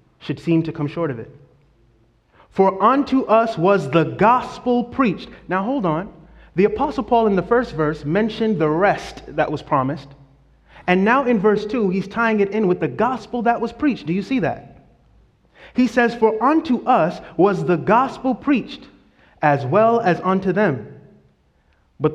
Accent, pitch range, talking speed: American, 155-225 Hz, 175 wpm